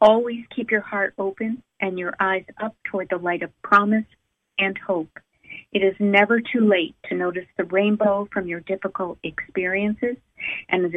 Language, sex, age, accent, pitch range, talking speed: English, female, 50-69, American, 180-215 Hz, 170 wpm